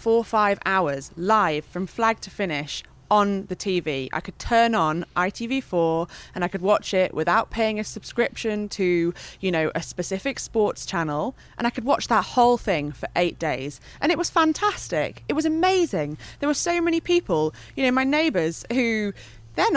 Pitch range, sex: 175-275 Hz, female